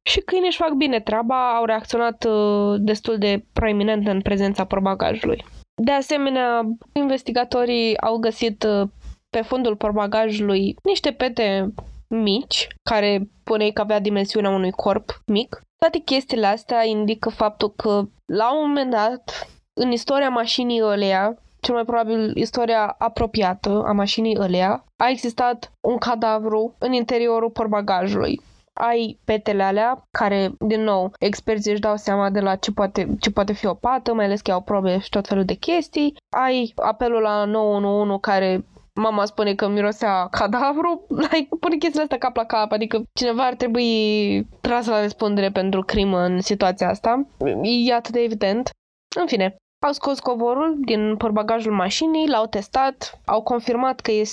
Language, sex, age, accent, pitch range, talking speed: Romanian, female, 20-39, native, 205-245 Hz, 150 wpm